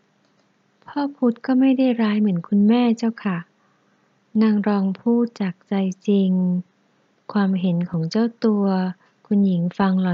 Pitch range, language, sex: 175-210 Hz, Thai, female